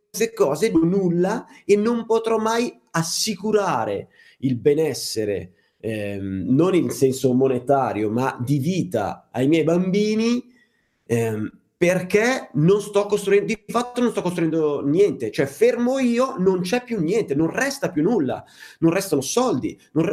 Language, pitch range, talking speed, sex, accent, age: Italian, 135-210 Hz, 135 wpm, male, native, 30-49